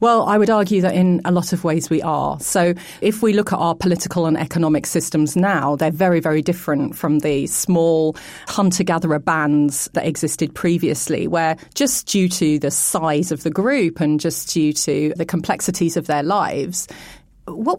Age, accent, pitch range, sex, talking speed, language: 30-49, British, 165-205 Hz, female, 180 wpm, English